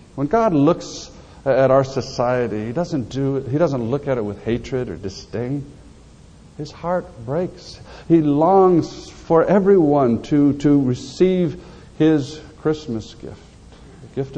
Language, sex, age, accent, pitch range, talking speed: English, male, 60-79, American, 115-150 Hz, 140 wpm